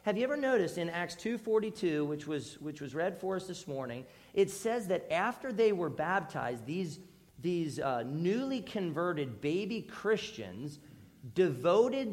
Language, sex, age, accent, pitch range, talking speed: English, male, 40-59, American, 150-215 Hz, 155 wpm